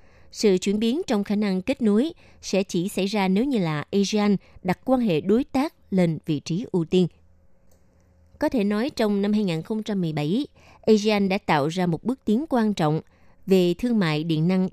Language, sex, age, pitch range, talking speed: Vietnamese, female, 20-39, 165-215 Hz, 190 wpm